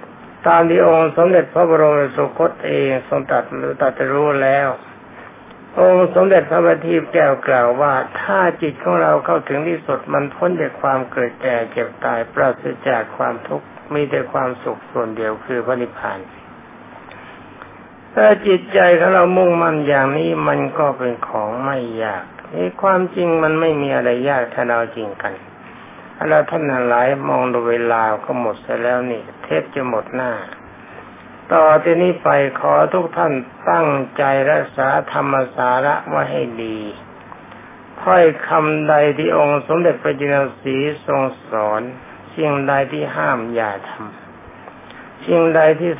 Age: 60-79